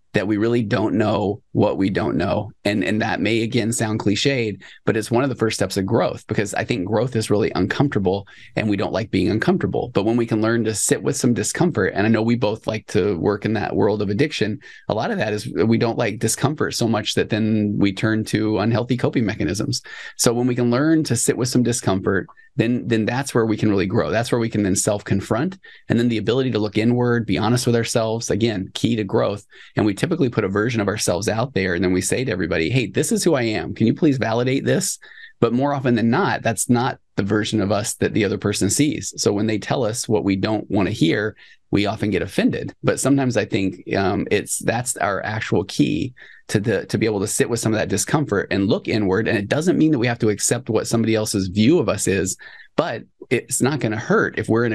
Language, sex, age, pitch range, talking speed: English, male, 20-39, 105-120 Hz, 250 wpm